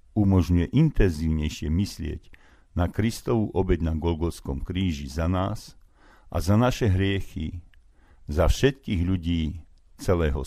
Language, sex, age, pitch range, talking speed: Slovak, male, 50-69, 75-100 Hz, 110 wpm